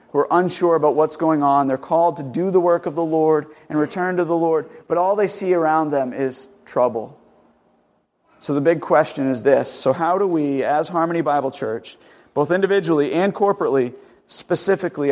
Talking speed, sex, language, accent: 190 wpm, male, English, American